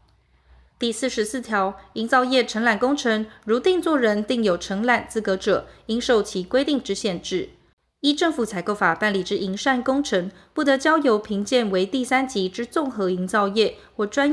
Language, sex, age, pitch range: Chinese, female, 20-39, 200-260 Hz